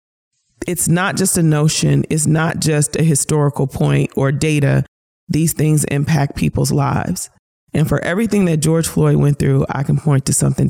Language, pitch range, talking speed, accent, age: English, 140-170 Hz, 175 wpm, American, 40-59